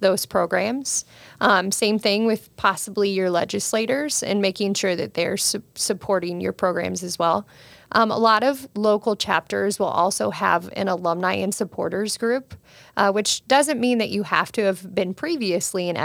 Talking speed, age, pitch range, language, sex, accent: 170 wpm, 30-49, 185-215 Hz, English, female, American